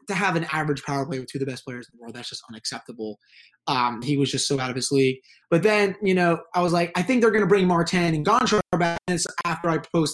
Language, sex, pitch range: English, male, 140-180 Hz